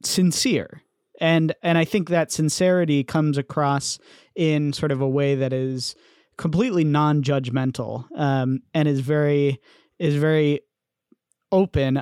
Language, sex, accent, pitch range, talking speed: English, male, American, 135-165 Hz, 125 wpm